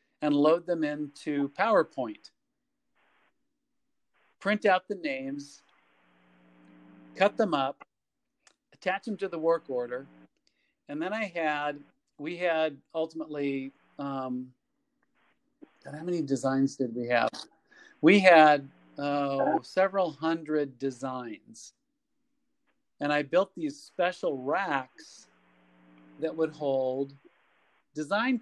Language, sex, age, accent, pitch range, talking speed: English, male, 40-59, American, 135-185 Hz, 100 wpm